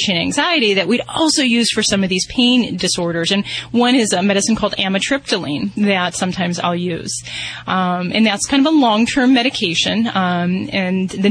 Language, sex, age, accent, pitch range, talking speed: English, female, 30-49, American, 185-225 Hz, 175 wpm